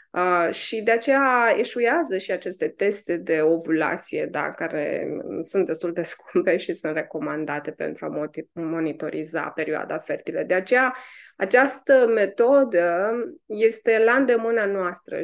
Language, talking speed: Romanian, 120 wpm